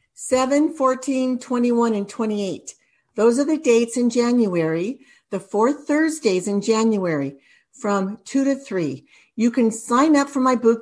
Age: 60-79